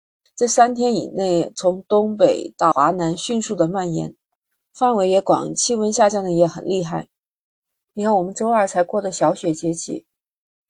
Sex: female